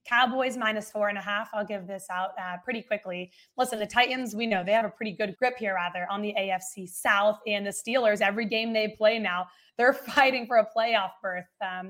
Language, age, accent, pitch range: English, 20-39, American, 185-220 Hz